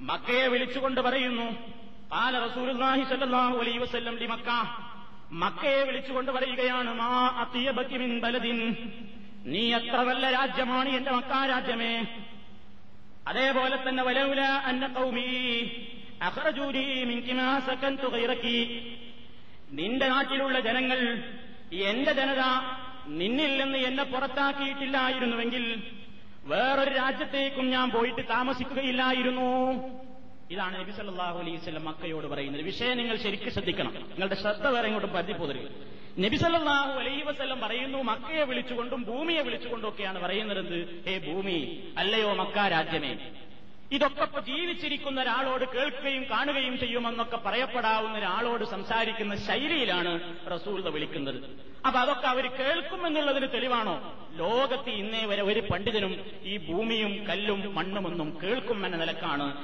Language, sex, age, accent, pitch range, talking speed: Malayalam, male, 30-49, native, 215-265 Hz, 75 wpm